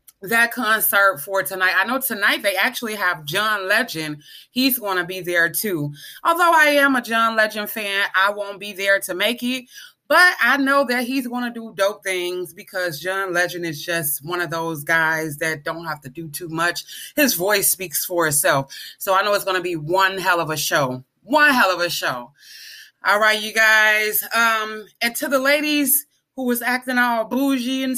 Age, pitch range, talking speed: 20-39, 175-245 Hz, 200 wpm